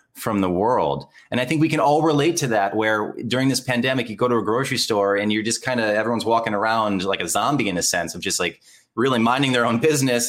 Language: English